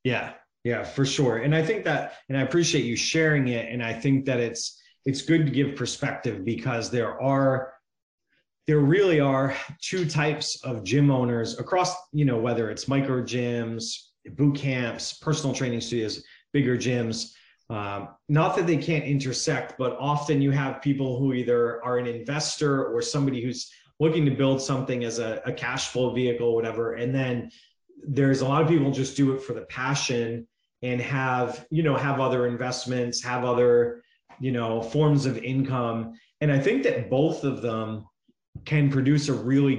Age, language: 30-49, English